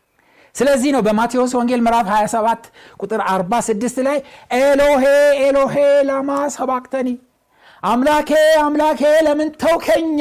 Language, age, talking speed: Amharic, 60-79, 95 wpm